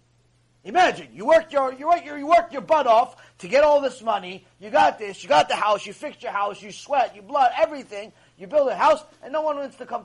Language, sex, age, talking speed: English, male, 30-49, 255 wpm